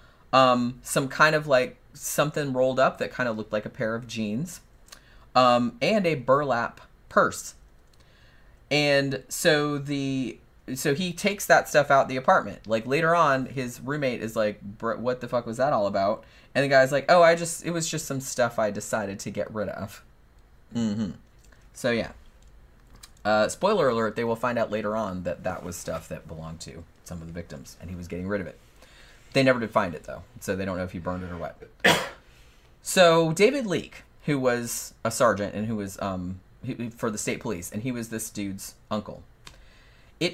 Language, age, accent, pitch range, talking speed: English, 30-49, American, 105-145 Hz, 200 wpm